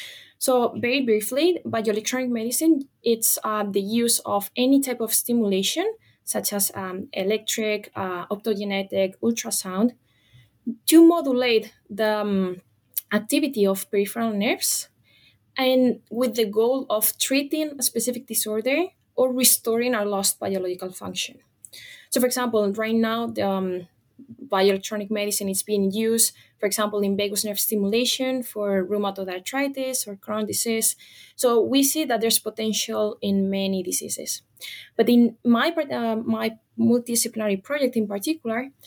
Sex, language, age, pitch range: female, English, 20-39, 205-260 Hz